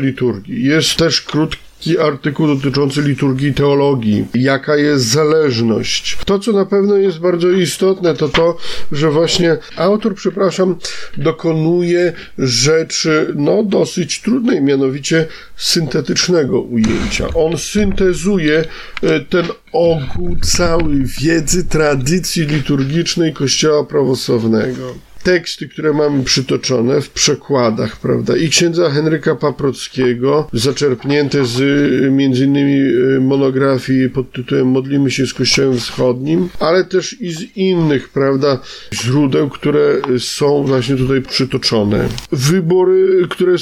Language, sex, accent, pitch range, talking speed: Polish, male, native, 130-165 Hz, 105 wpm